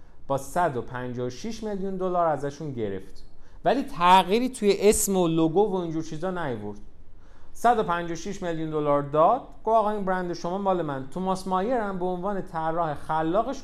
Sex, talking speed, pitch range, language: male, 150 wpm, 130-195 Hz, Persian